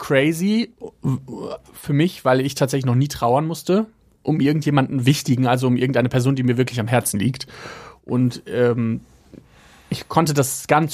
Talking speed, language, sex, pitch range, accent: 160 wpm, German, male, 125-145 Hz, German